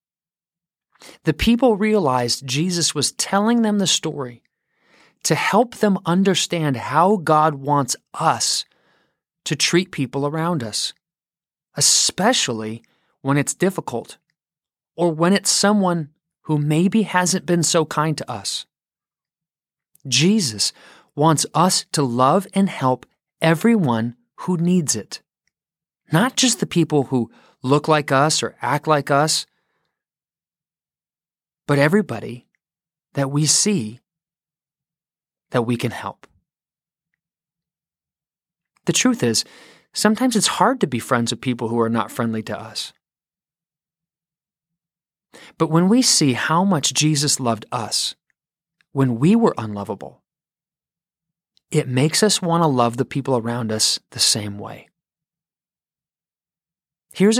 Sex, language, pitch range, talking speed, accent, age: male, English, 135-175 Hz, 120 wpm, American, 30-49